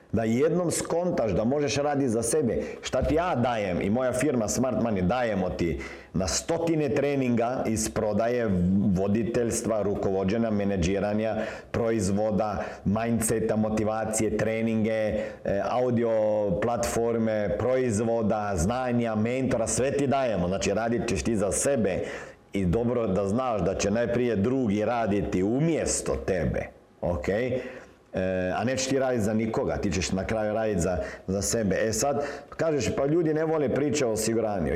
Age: 50-69